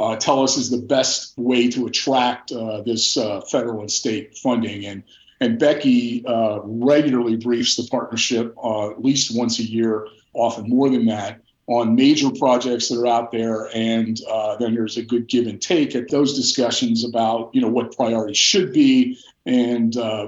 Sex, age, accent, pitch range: male, 40-59, American, 115-155 Hz